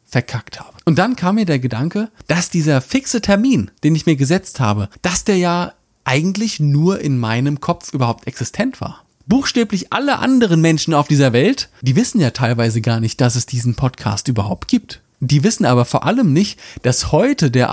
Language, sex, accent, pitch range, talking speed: German, male, German, 125-185 Hz, 190 wpm